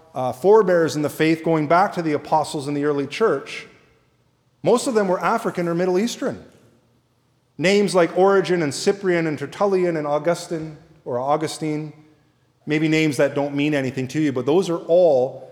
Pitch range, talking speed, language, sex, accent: 130-175 Hz, 175 wpm, English, male, American